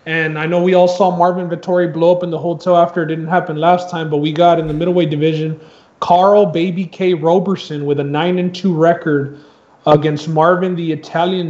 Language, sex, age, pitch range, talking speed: English, male, 20-39, 150-180 Hz, 210 wpm